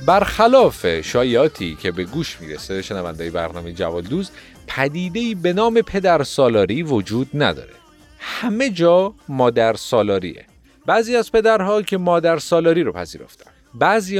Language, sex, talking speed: Persian, male, 125 wpm